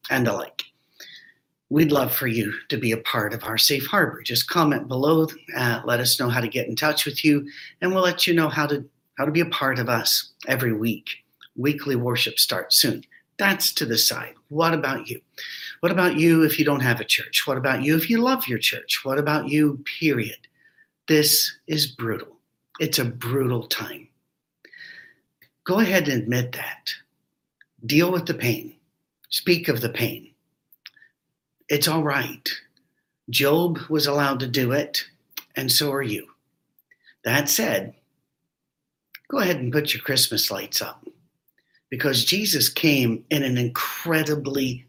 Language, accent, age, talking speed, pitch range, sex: English, American, 50-69, 170 wpm, 125-160 Hz, male